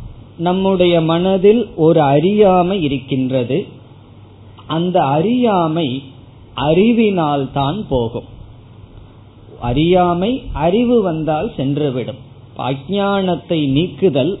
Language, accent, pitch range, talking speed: Tamil, native, 125-170 Hz, 60 wpm